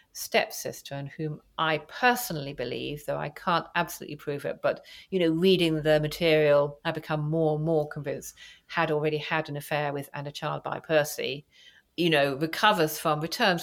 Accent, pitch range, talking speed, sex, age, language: British, 150-215 Hz, 175 wpm, female, 50-69, English